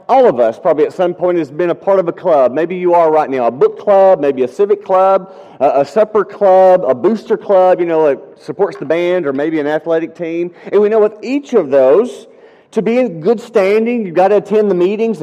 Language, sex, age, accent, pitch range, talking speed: English, male, 40-59, American, 170-230 Hz, 245 wpm